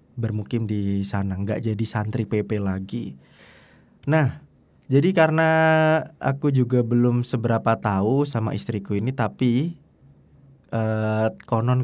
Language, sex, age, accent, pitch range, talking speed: Indonesian, male, 20-39, native, 105-135 Hz, 110 wpm